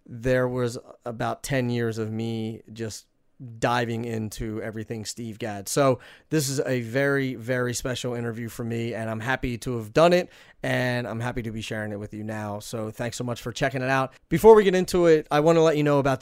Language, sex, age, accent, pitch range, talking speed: English, male, 30-49, American, 115-140 Hz, 220 wpm